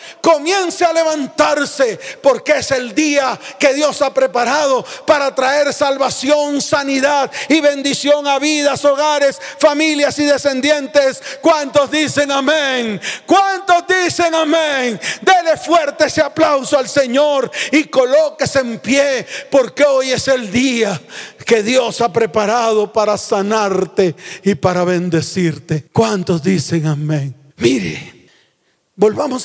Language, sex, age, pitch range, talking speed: Spanish, male, 40-59, 190-285 Hz, 120 wpm